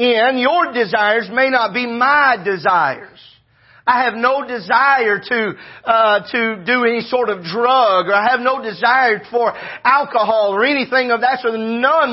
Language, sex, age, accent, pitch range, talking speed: English, male, 40-59, American, 210-280 Hz, 165 wpm